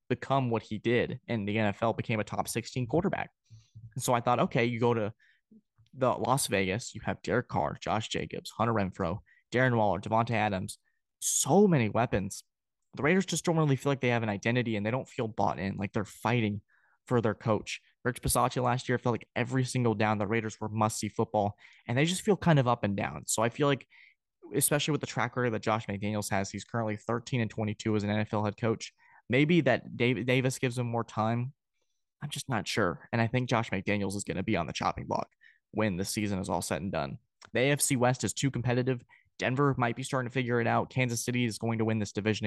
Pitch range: 105-125 Hz